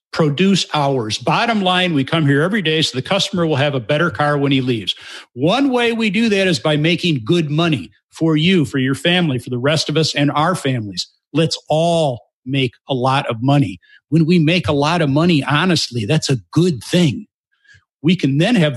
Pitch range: 140-185 Hz